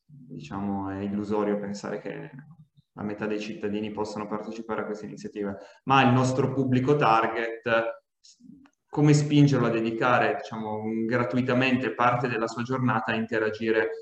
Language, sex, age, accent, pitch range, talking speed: Italian, male, 20-39, native, 110-125 Hz, 135 wpm